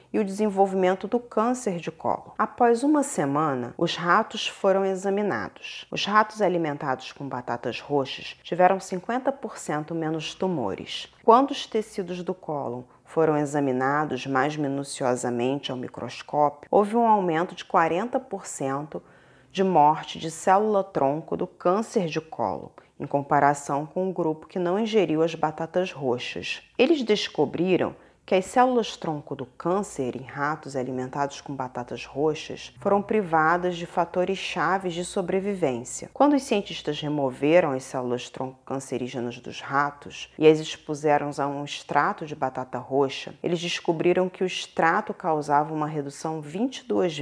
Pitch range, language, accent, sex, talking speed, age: 145-195 Hz, Portuguese, Brazilian, female, 135 wpm, 30-49